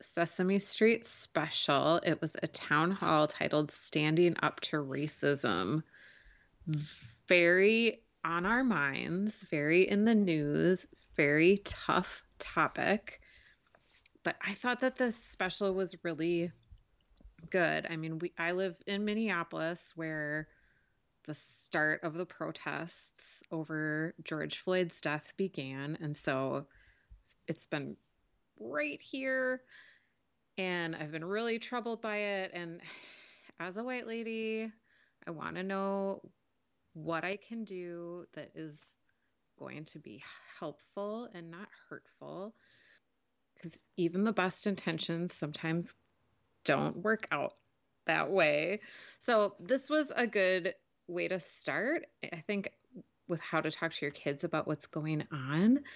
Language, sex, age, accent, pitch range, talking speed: English, female, 20-39, American, 155-200 Hz, 125 wpm